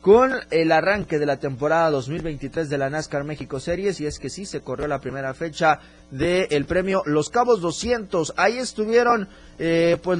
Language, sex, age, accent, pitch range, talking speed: Spanish, male, 30-49, Mexican, 130-170 Hz, 180 wpm